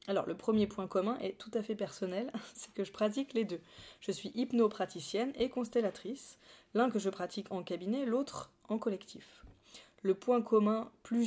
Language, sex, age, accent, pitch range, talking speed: French, female, 20-39, French, 185-225 Hz, 180 wpm